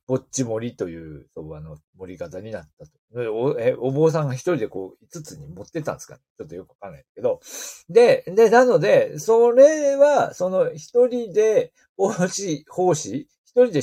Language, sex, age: Japanese, male, 40-59